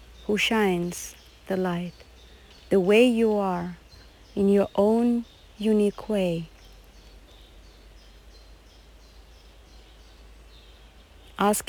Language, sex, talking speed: English, female, 70 wpm